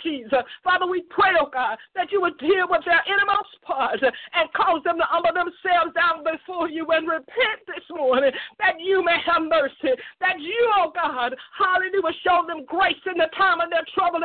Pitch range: 330-380 Hz